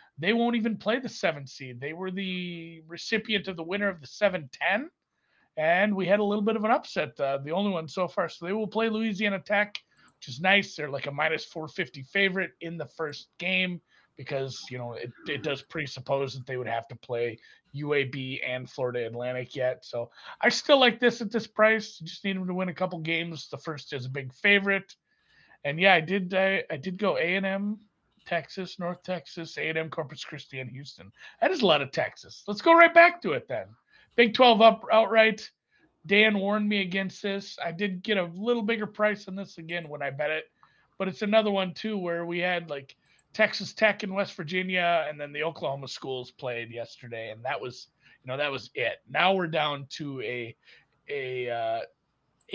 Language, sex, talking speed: English, male, 210 wpm